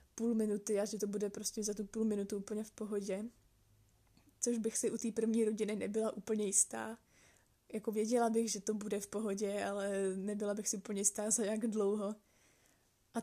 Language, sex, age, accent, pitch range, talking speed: Czech, female, 20-39, native, 205-220 Hz, 190 wpm